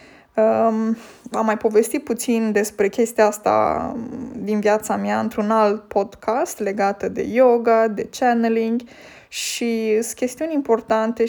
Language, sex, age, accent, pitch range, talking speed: Romanian, female, 20-39, native, 210-245 Hz, 115 wpm